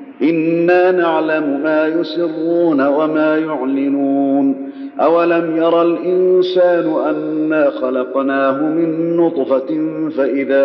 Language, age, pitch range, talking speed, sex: Arabic, 50-69, 140-170 Hz, 80 wpm, male